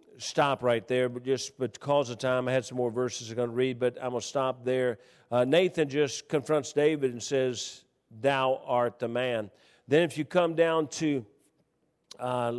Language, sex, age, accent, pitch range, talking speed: English, male, 50-69, American, 125-155 Hz, 195 wpm